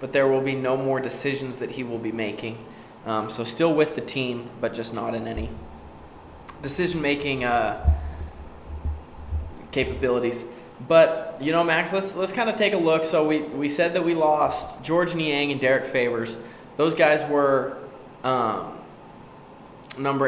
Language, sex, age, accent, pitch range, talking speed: English, male, 20-39, American, 125-150 Hz, 160 wpm